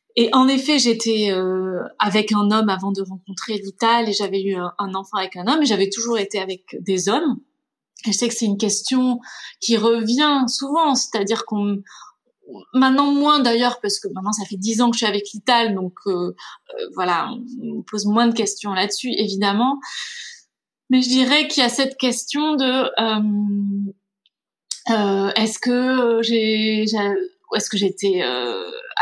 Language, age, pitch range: French, 20-39, 205-260 Hz